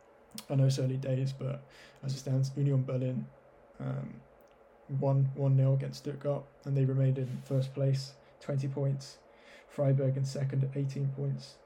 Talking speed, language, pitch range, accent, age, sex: 160 wpm, English, 135-140 Hz, British, 10-29, male